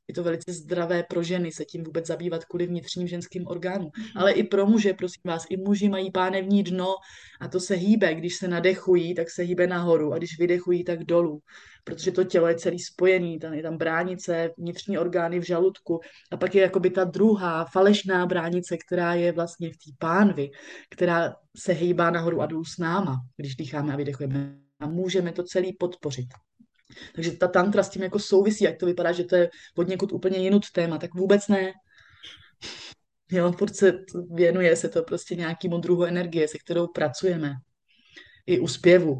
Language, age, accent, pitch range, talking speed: Czech, 20-39, native, 160-185 Hz, 180 wpm